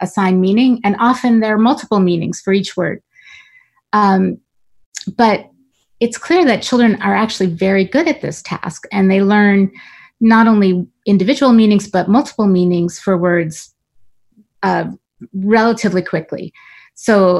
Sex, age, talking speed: female, 30-49, 140 wpm